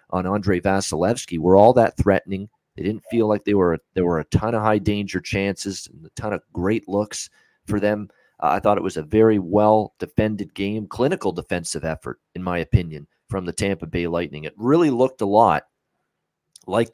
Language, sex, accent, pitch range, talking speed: English, male, American, 85-105 Hz, 200 wpm